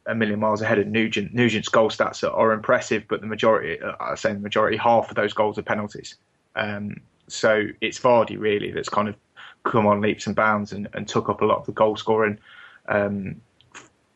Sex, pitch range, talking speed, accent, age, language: male, 105-115 Hz, 210 wpm, British, 20-39, English